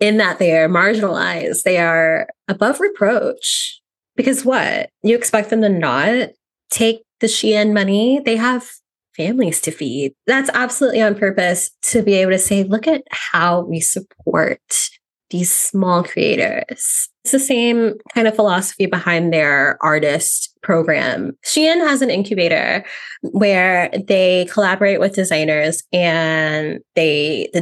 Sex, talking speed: female, 140 wpm